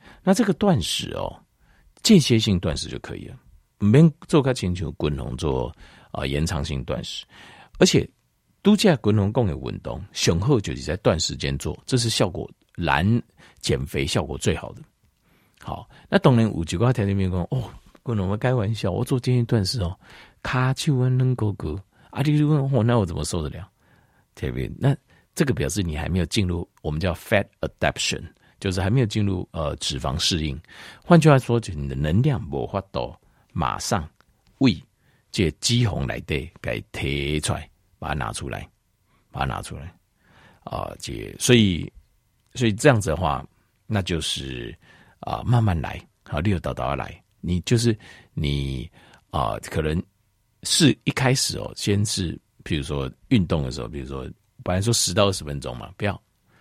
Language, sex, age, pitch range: Chinese, male, 50-69, 80-120 Hz